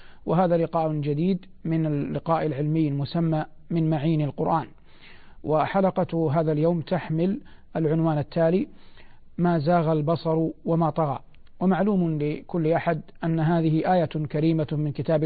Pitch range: 155-170 Hz